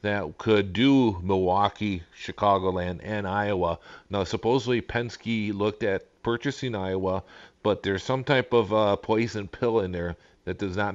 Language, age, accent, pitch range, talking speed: English, 40-59, American, 90-110 Hz, 150 wpm